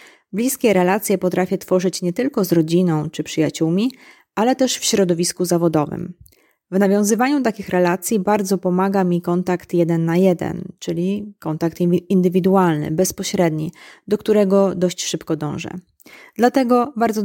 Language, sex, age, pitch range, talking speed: Polish, female, 20-39, 170-220 Hz, 130 wpm